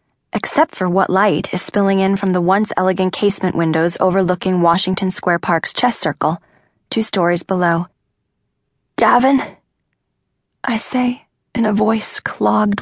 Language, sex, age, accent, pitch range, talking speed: English, female, 20-39, American, 185-255 Hz, 130 wpm